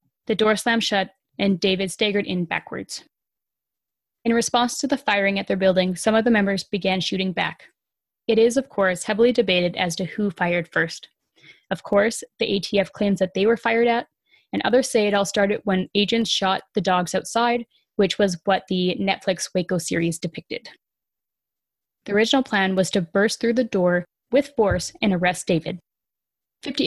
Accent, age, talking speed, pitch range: American, 10-29, 180 wpm, 190-230 Hz